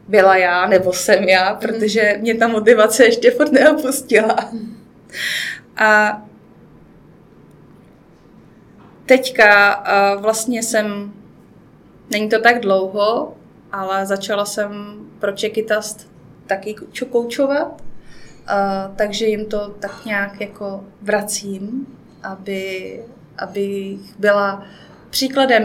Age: 20-39